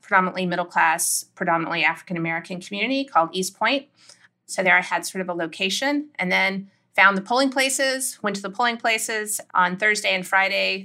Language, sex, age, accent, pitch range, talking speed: English, female, 30-49, American, 175-220 Hz, 170 wpm